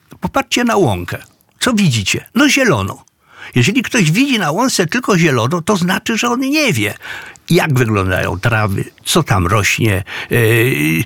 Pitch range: 125-190 Hz